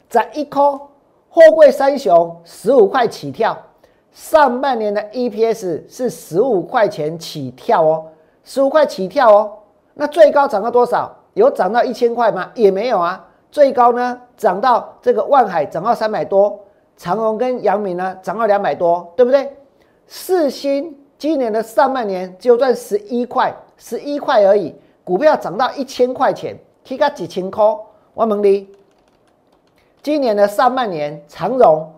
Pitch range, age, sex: 200-275 Hz, 50-69, male